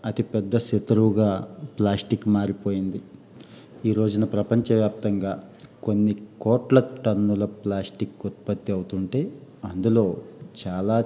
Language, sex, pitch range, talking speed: Telugu, male, 100-115 Hz, 85 wpm